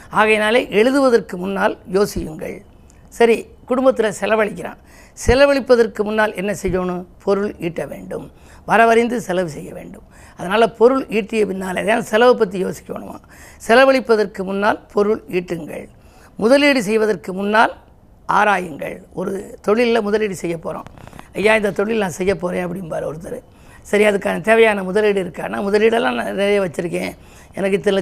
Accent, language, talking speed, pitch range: native, Tamil, 125 wpm, 195-235 Hz